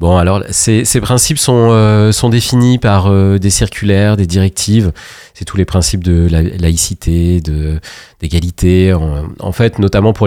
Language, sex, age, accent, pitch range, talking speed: French, male, 40-59, French, 90-115 Hz, 165 wpm